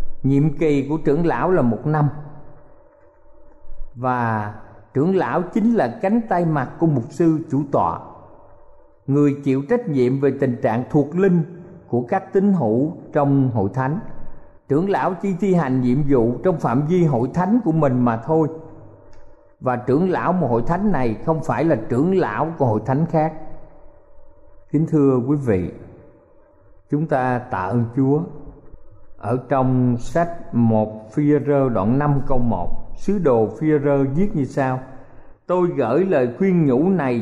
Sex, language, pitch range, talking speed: male, Vietnamese, 120-160 Hz, 160 wpm